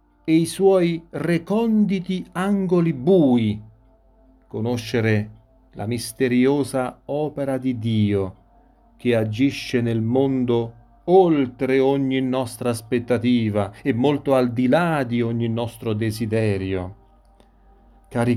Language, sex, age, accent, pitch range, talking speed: Italian, male, 40-59, native, 110-150 Hz, 100 wpm